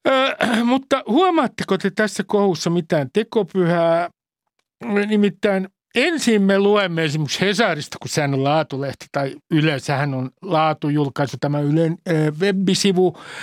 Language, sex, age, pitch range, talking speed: Finnish, male, 60-79, 160-240 Hz, 120 wpm